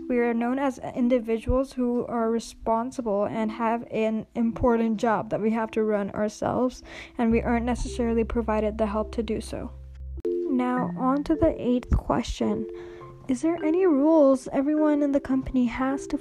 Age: 20-39